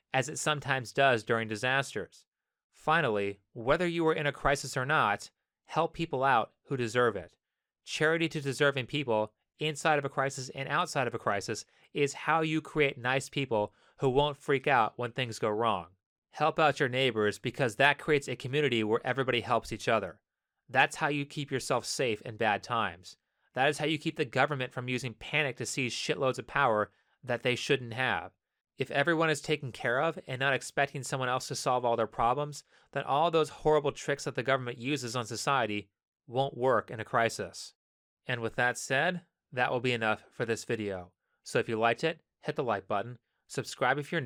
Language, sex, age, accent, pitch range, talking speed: English, male, 30-49, American, 120-150 Hz, 195 wpm